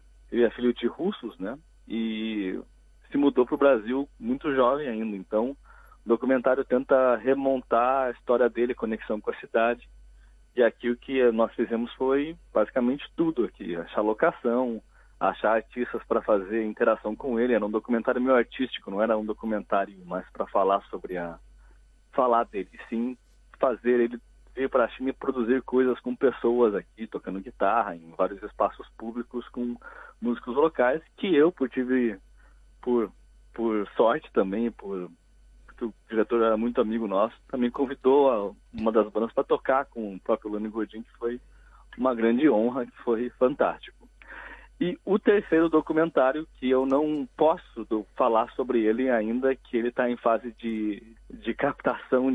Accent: Brazilian